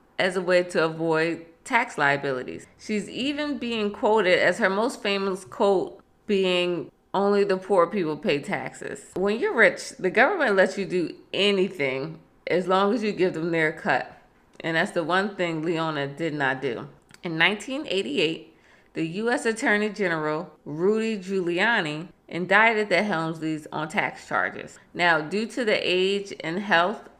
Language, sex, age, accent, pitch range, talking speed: English, female, 20-39, American, 170-210 Hz, 155 wpm